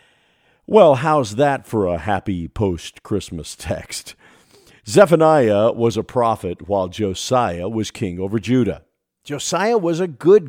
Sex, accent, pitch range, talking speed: male, American, 110-160 Hz, 125 wpm